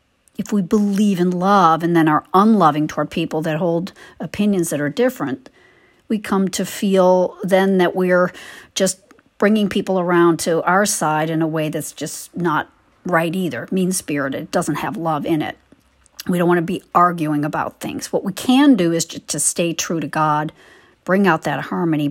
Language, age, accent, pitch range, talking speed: English, 50-69, American, 155-205 Hz, 185 wpm